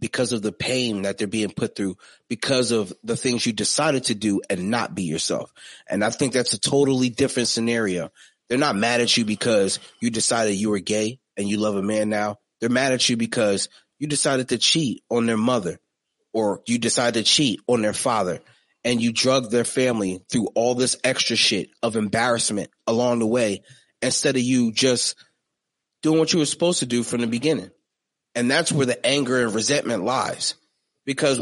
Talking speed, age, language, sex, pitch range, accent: 200 wpm, 30-49, English, male, 115-170 Hz, American